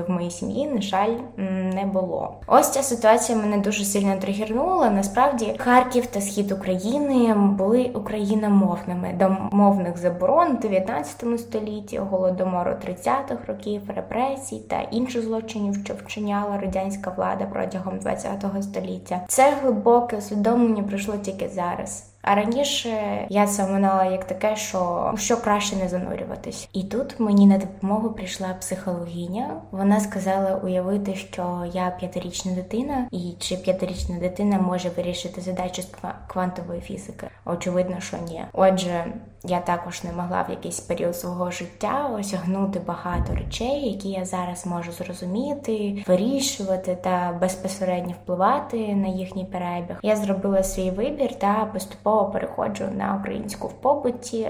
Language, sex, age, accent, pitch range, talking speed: Ukrainian, female, 20-39, native, 185-220 Hz, 135 wpm